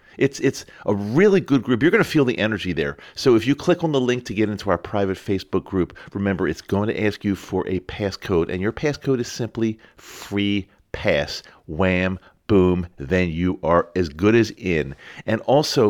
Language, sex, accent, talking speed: English, male, American, 200 wpm